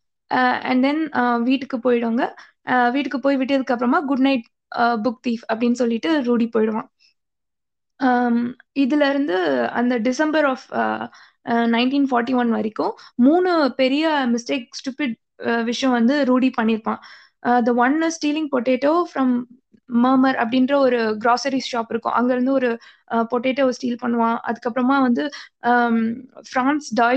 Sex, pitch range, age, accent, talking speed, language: female, 240-275 Hz, 20-39, native, 75 wpm, Tamil